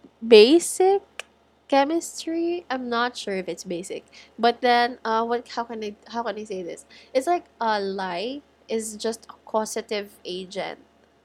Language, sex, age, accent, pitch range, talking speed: English, female, 20-39, Filipino, 195-275 Hz, 155 wpm